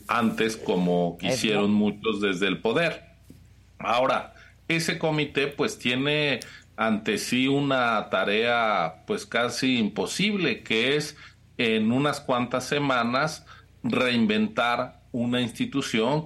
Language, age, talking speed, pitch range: Spanish, 40-59, 105 wpm, 110-145 Hz